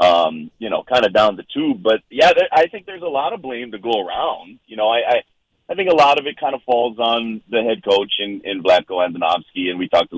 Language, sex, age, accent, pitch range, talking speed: English, male, 30-49, American, 90-120 Hz, 260 wpm